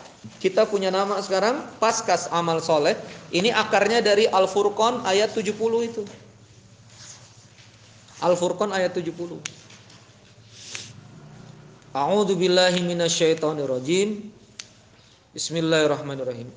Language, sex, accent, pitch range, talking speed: Indonesian, male, native, 145-190 Hz, 70 wpm